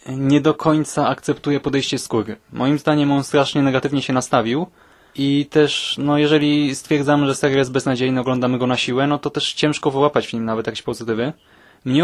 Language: Polish